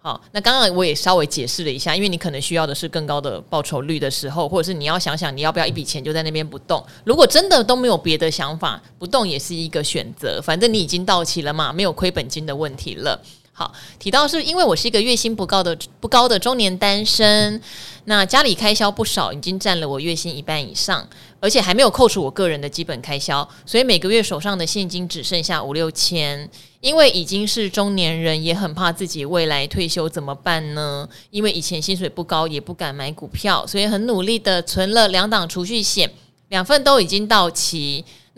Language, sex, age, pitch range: Chinese, female, 20-39, 160-215 Hz